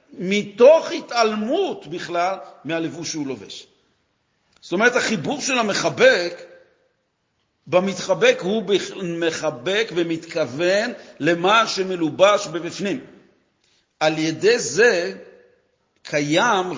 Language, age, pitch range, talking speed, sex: Hebrew, 50-69, 165-250 Hz, 80 wpm, male